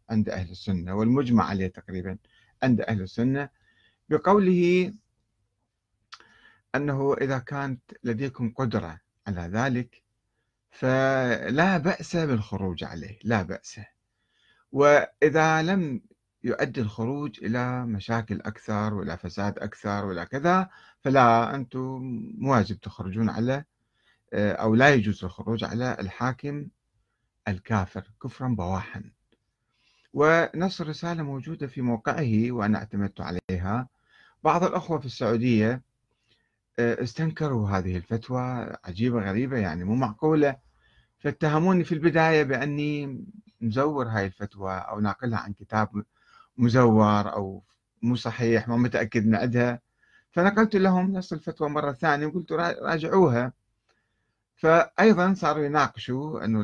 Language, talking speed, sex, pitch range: Arabic, 105 wpm, male, 105-140 Hz